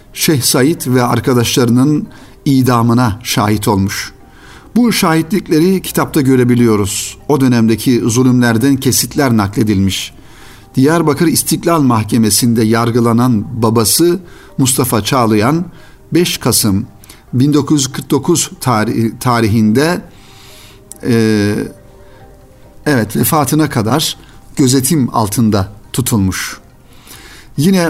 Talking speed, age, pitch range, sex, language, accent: 70 wpm, 60-79, 115-150 Hz, male, Turkish, native